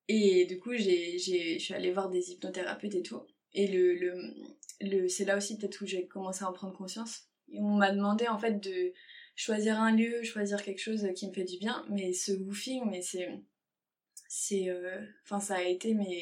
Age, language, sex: 20-39, French, female